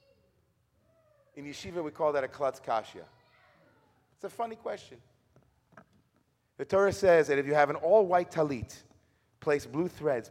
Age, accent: 30-49, American